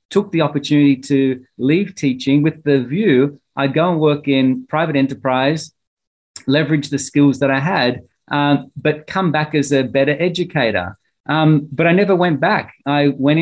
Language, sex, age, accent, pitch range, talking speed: English, male, 30-49, Australian, 135-160 Hz, 170 wpm